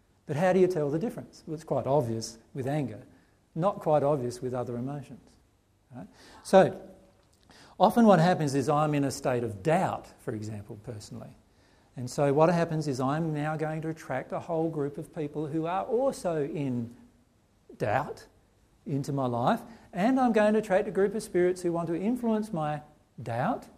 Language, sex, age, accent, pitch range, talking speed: English, male, 50-69, Australian, 125-180 Hz, 180 wpm